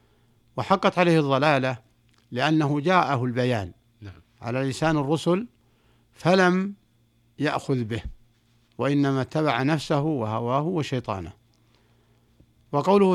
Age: 60-79